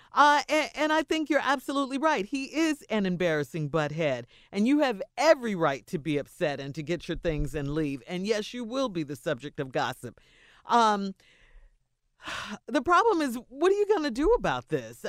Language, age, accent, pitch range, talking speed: English, 40-59, American, 175-265 Hz, 195 wpm